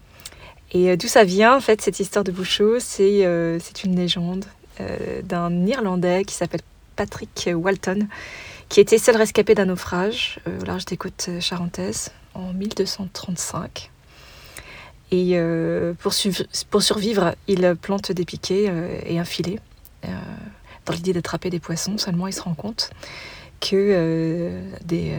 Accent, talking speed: French, 150 wpm